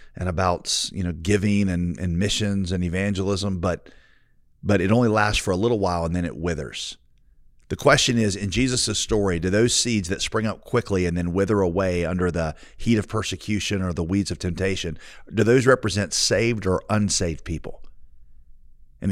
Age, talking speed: 40-59, 180 wpm